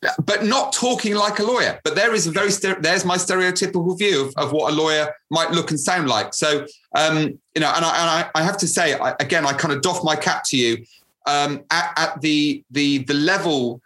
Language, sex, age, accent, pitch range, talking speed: English, male, 30-49, British, 135-170 Hz, 235 wpm